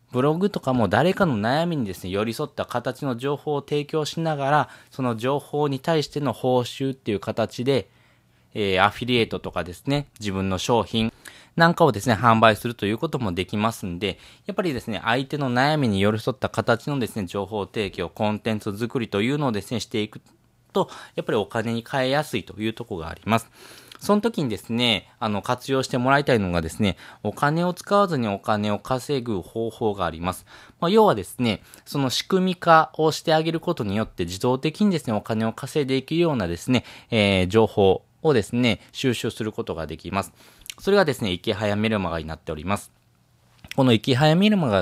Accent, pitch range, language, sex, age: native, 100-135 Hz, Japanese, male, 20-39